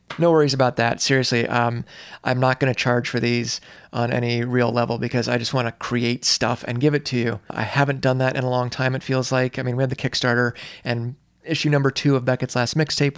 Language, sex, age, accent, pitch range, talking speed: English, male, 30-49, American, 120-145 Hz, 245 wpm